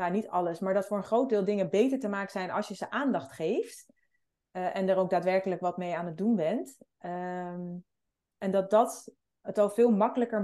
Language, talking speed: Dutch, 220 wpm